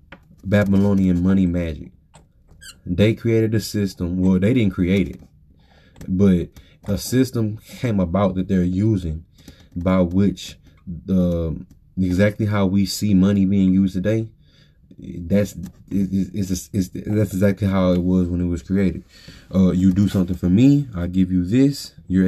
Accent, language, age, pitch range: American, English, 20-39, 90-100 Hz